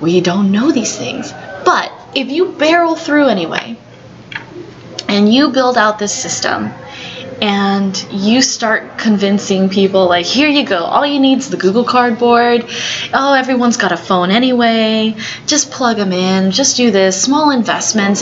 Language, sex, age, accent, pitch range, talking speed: English, female, 20-39, American, 185-235 Hz, 160 wpm